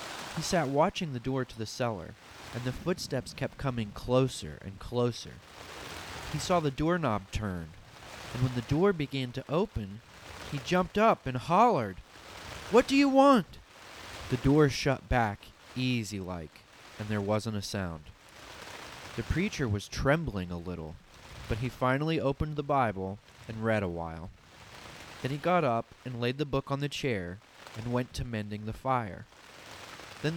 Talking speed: 160 wpm